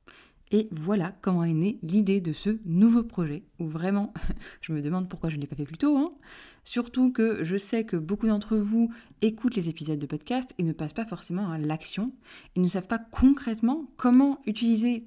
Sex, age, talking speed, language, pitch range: female, 20-39, 205 wpm, French, 170-235 Hz